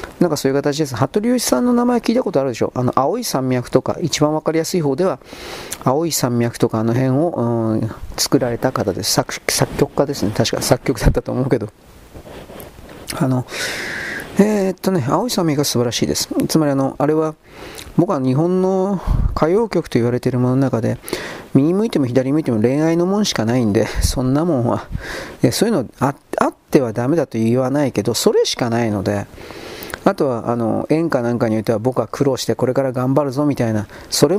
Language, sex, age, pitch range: Japanese, male, 40-59, 115-150 Hz